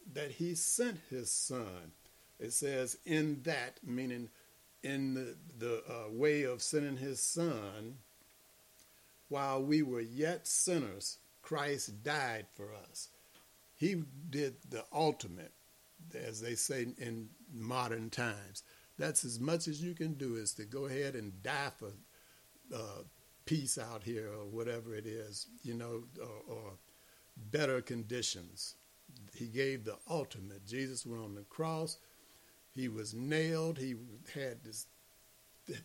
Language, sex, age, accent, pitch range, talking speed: English, male, 60-79, American, 115-155 Hz, 135 wpm